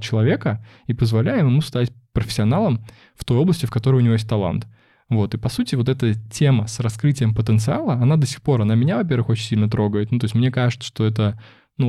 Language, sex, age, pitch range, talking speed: Russian, male, 20-39, 110-130 Hz, 215 wpm